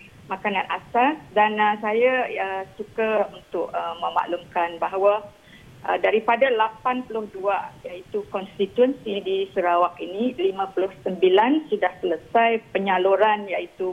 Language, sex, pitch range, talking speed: Malay, female, 185-230 Hz, 105 wpm